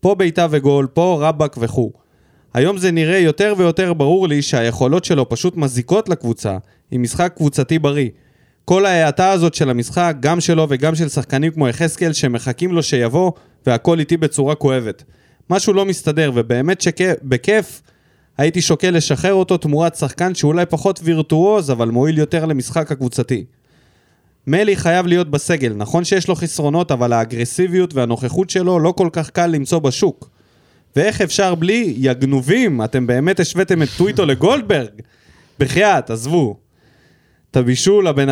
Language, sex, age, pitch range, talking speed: Hebrew, male, 20-39, 130-180 Hz, 145 wpm